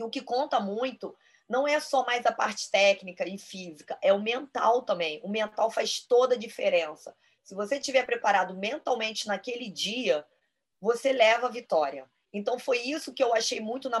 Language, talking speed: Portuguese, 185 wpm